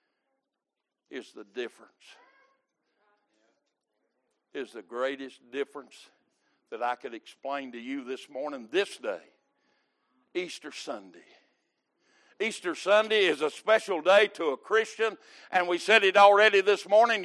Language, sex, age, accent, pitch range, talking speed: English, male, 60-79, American, 205-345 Hz, 120 wpm